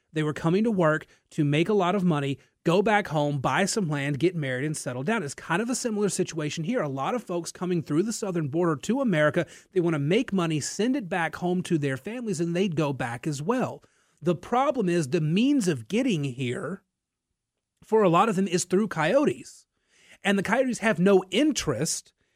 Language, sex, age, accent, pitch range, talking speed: English, male, 30-49, American, 155-210 Hz, 215 wpm